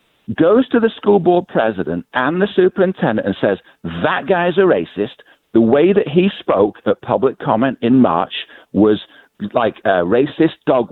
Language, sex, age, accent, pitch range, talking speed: English, male, 50-69, British, 125-195 Hz, 165 wpm